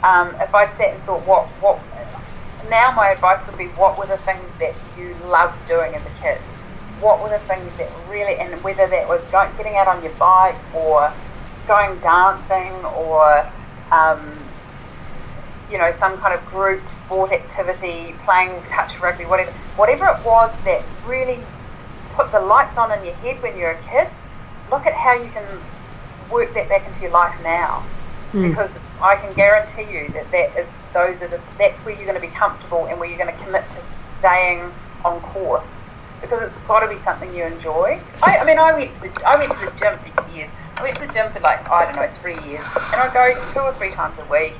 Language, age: English, 30-49